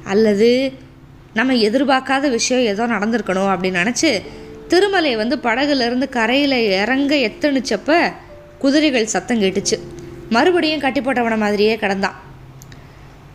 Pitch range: 205-290 Hz